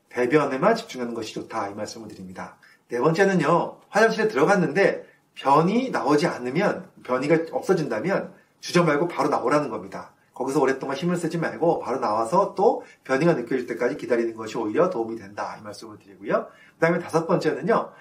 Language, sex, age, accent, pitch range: Korean, male, 30-49, native, 120-175 Hz